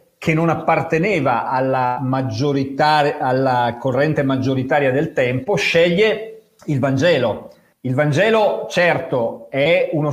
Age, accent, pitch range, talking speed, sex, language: 40-59, native, 130-175 Hz, 105 wpm, male, Italian